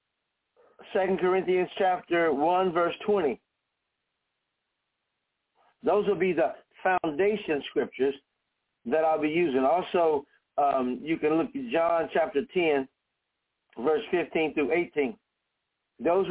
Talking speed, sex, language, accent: 110 wpm, male, English, American